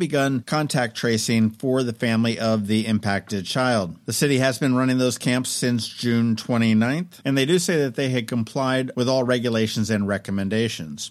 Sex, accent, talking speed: male, American, 180 wpm